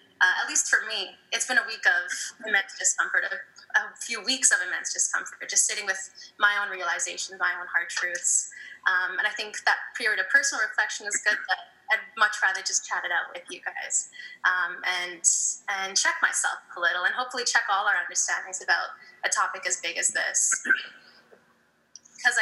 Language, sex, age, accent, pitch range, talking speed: English, female, 10-29, American, 190-275 Hz, 185 wpm